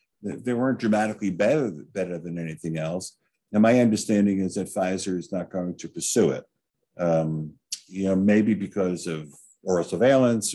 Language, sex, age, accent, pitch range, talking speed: English, male, 50-69, American, 95-125 Hz, 160 wpm